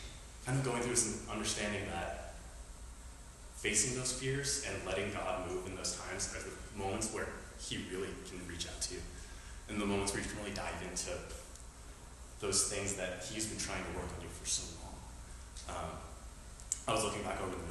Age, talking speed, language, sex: 20-39, 195 wpm, English, male